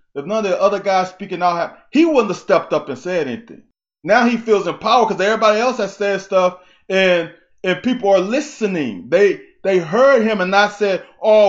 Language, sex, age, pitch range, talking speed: English, male, 20-39, 180-250 Hz, 205 wpm